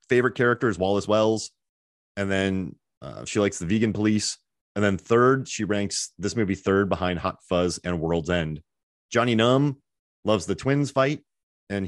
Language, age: English, 30-49